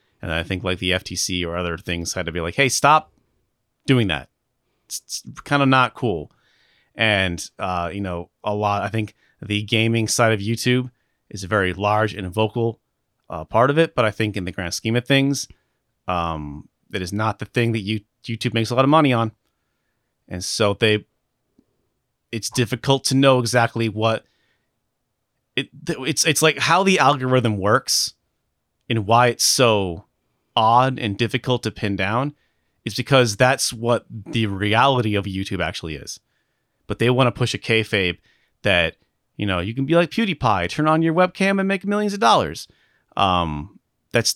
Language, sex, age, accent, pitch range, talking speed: English, male, 30-49, American, 100-130 Hz, 180 wpm